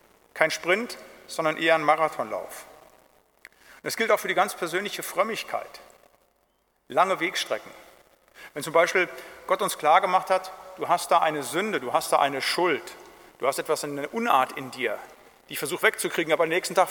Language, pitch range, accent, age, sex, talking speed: German, 150-185 Hz, German, 50-69, male, 175 wpm